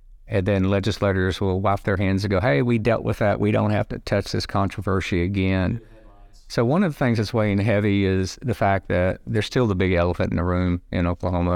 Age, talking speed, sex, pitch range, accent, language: 50-69, 230 wpm, male, 90-105 Hz, American, English